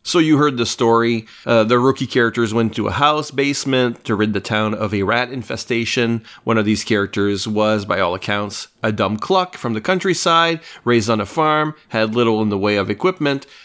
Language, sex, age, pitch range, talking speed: English, male, 40-59, 110-140 Hz, 205 wpm